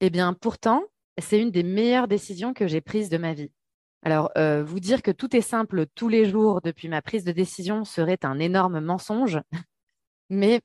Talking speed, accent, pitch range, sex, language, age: 195 wpm, French, 170-225 Hz, female, French, 20-39